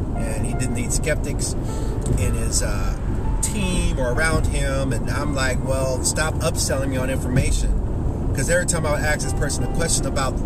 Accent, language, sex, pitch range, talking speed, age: American, English, male, 100-125 Hz, 185 wpm, 30-49